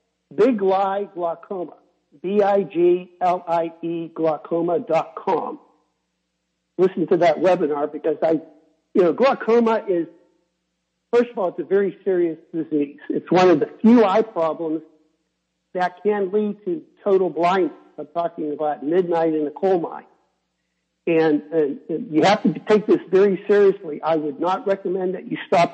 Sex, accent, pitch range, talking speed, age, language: male, American, 160-195 Hz, 140 wpm, 60-79, English